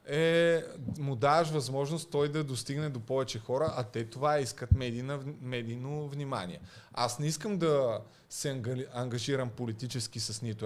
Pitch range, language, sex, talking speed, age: 115-150 Hz, Bulgarian, male, 145 wpm, 30-49